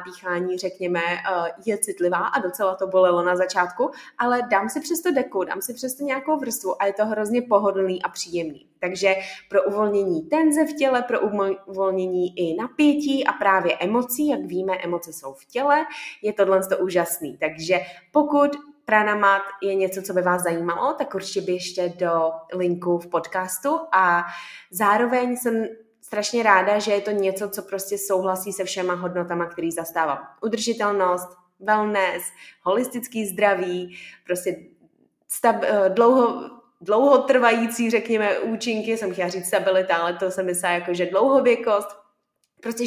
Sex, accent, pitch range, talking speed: female, native, 180-225 Hz, 150 wpm